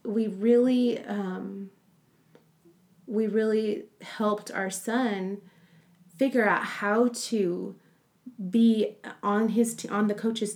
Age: 30-49